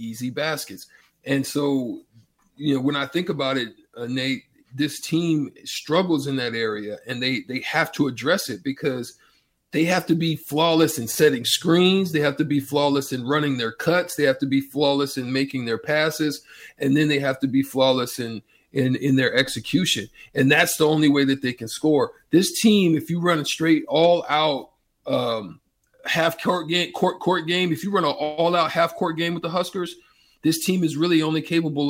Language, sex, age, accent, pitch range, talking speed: English, male, 40-59, American, 135-175 Hz, 205 wpm